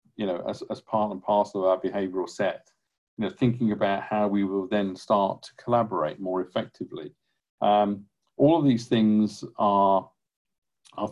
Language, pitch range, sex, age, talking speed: English, 100-115 Hz, male, 50-69, 165 wpm